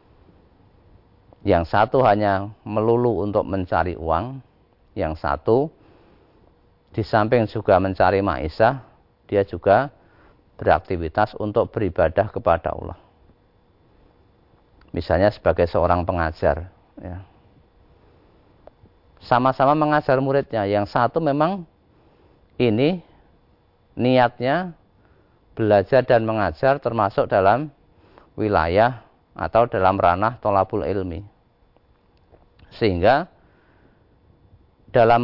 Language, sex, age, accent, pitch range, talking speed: Indonesian, male, 40-59, native, 95-120 Hz, 80 wpm